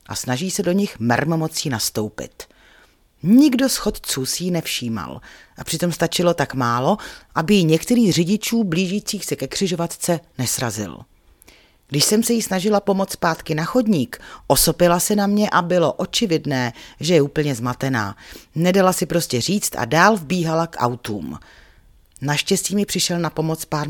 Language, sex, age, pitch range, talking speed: Czech, female, 40-59, 125-185 Hz, 155 wpm